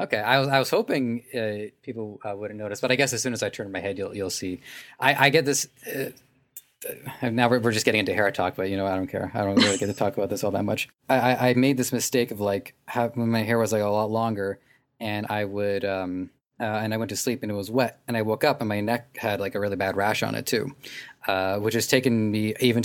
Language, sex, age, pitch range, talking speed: English, male, 20-39, 100-125 Hz, 275 wpm